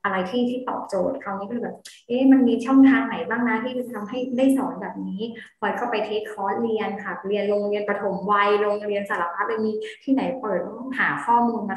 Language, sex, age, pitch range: Thai, female, 20-39, 205-245 Hz